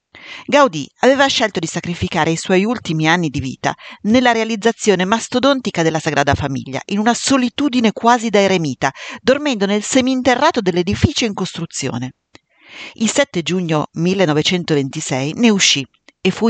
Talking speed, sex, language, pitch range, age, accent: 135 wpm, female, Italian, 155-235 Hz, 40-59, native